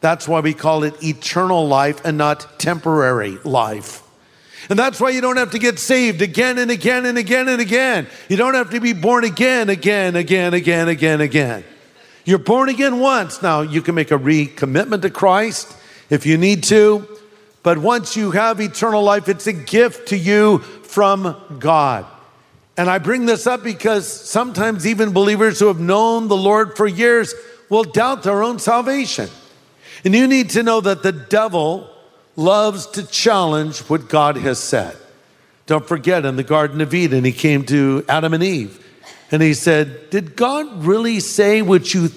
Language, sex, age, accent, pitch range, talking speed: English, male, 50-69, American, 155-220 Hz, 180 wpm